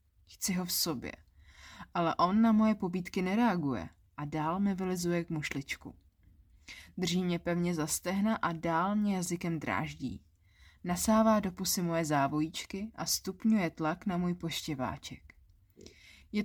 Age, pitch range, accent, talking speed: 20-39, 130-195 Hz, native, 140 wpm